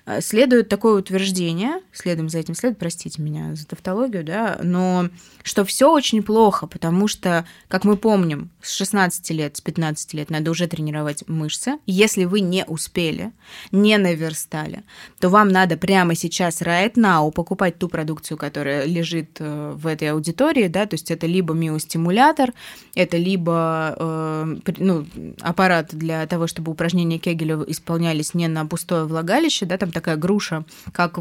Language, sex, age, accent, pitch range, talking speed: Russian, female, 20-39, native, 165-205 Hz, 150 wpm